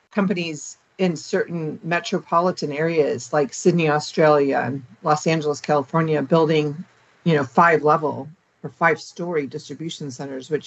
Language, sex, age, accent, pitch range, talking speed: English, female, 50-69, American, 150-175 Hz, 130 wpm